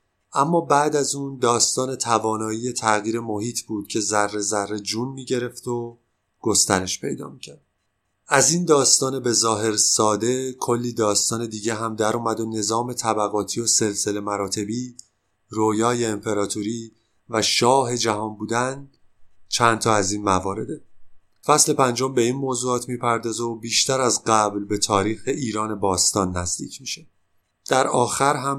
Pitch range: 105-125 Hz